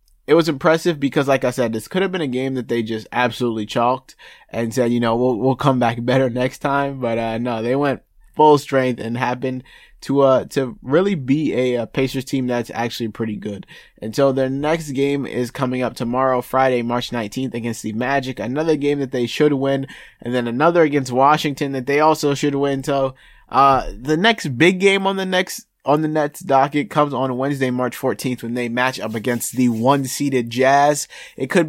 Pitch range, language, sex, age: 115-140 Hz, English, male, 20-39